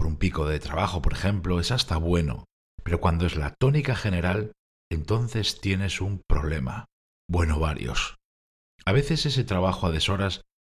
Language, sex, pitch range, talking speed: Spanish, male, 80-105 Hz, 150 wpm